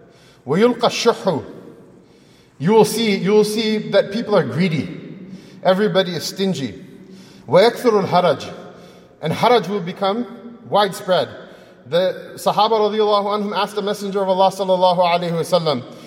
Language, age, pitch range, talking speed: English, 30-49, 155-225 Hz, 95 wpm